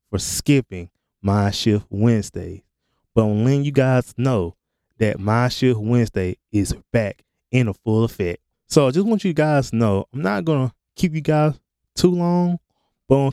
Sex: male